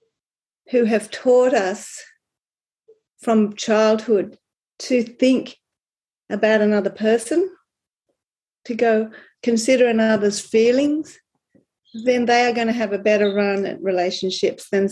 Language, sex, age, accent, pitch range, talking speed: English, female, 40-59, Australian, 200-240 Hz, 115 wpm